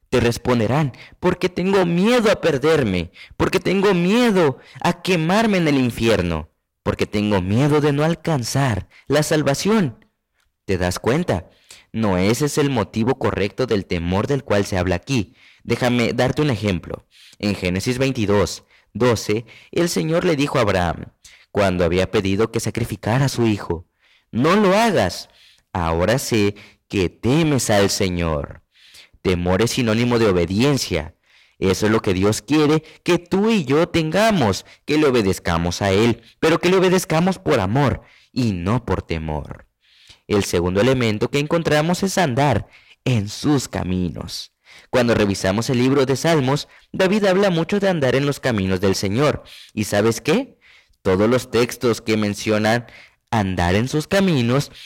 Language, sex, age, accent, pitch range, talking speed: Spanish, male, 30-49, Mexican, 100-155 Hz, 150 wpm